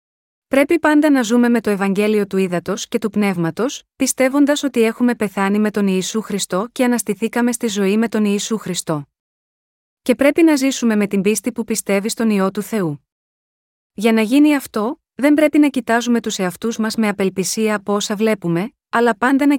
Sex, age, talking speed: female, 30-49, 185 wpm